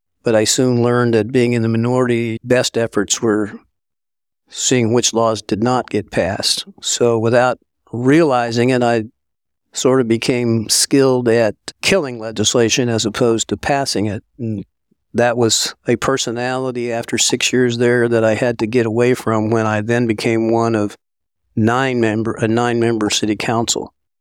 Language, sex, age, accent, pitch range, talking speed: English, male, 50-69, American, 110-125 Hz, 160 wpm